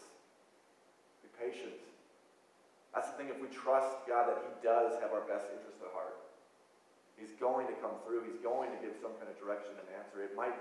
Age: 30-49